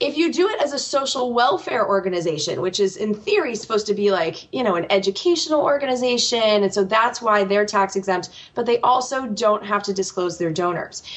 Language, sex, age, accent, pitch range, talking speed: English, female, 20-39, American, 190-250 Hz, 205 wpm